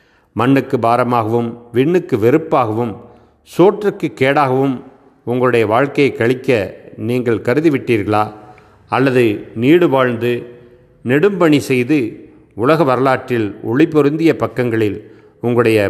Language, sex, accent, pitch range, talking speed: Tamil, male, native, 110-135 Hz, 80 wpm